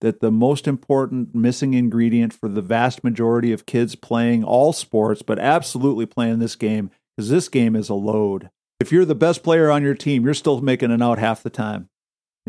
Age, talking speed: 50-69, 205 wpm